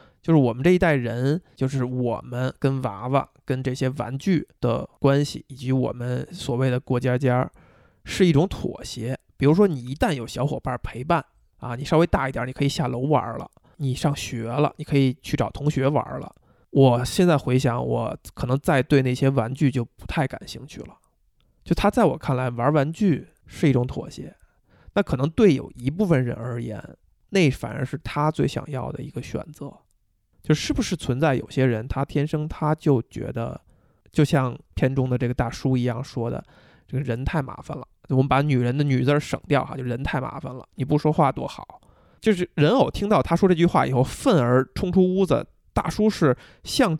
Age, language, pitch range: 20-39, Chinese, 125-160 Hz